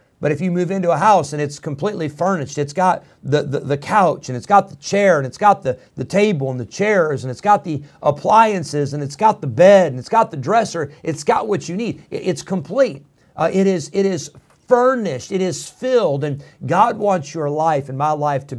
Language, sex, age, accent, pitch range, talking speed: English, male, 50-69, American, 130-165 Hz, 230 wpm